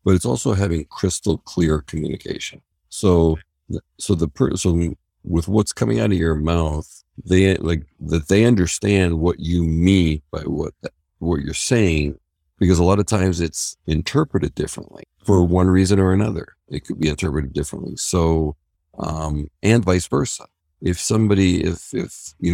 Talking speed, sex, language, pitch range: 155 wpm, male, English, 80-95 Hz